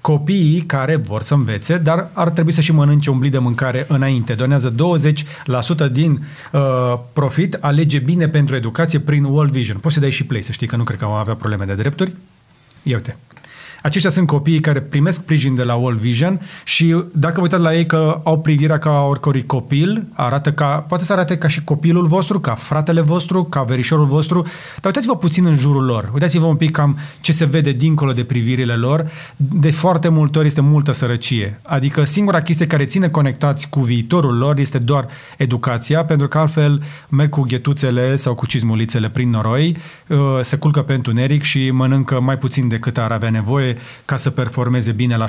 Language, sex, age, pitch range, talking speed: Romanian, male, 30-49, 130-160 Hz, 195 wpm